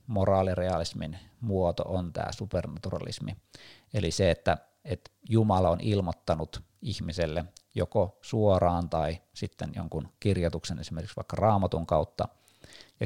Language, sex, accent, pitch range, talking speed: Finnish, male, native, 85-105 Hz, 110 wpm